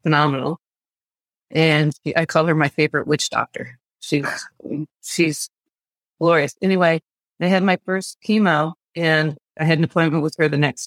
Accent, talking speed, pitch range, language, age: American, 150 wpm, 145-160 Hz, English, 40-59